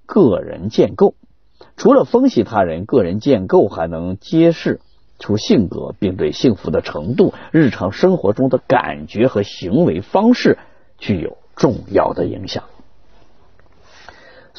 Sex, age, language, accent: male, 50-69, Chinese, native